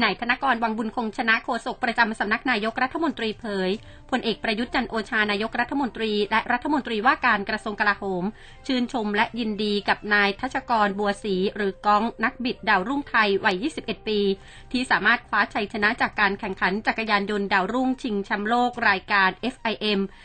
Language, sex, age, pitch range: Thai, female, 30-49, 200-240 Hz